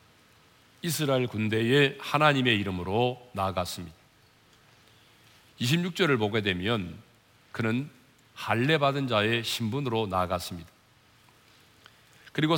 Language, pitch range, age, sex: Korean, 105-140 Hz, 40-59, male